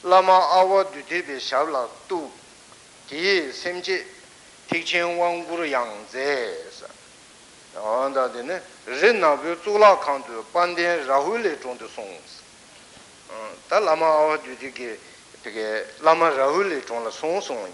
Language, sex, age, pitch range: Italian, male, 60-79, 135-180 Hz